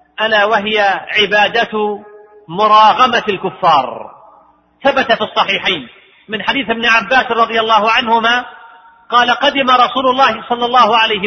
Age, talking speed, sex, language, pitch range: 40-59, 115 wpm, male, Arabic, 215-270 Hz